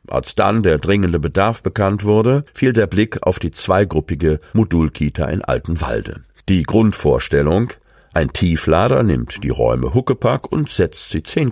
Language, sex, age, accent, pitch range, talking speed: German, male, 50-69, German, 75-110 Hz, 145 wpm